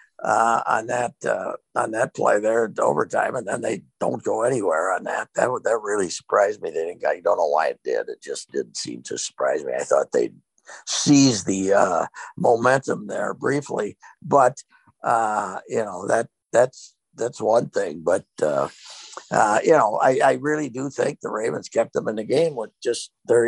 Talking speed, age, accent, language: 195 wpm, 60-79, American, English